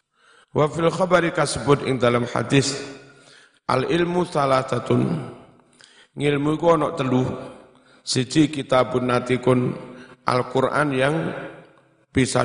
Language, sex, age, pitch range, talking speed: Indonesian, male, 50-69, 130-165 Hz, 100 wpm